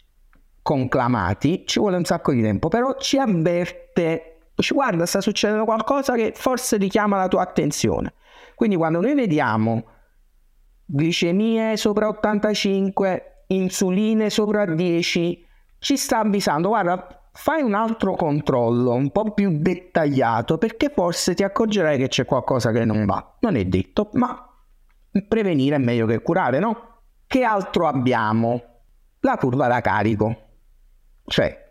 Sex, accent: male, native